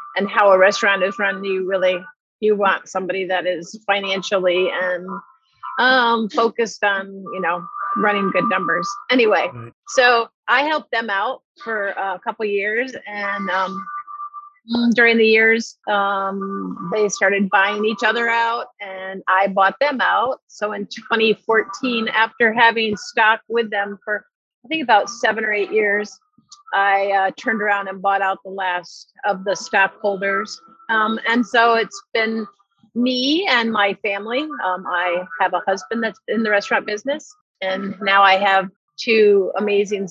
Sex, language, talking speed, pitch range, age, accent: female, English, 155 wpm, 195-230 Hz, 50-69, American